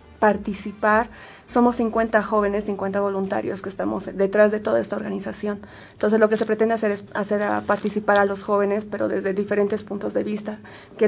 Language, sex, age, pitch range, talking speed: Spanish, female, 20-39, 195-215 Hz, 180 wpm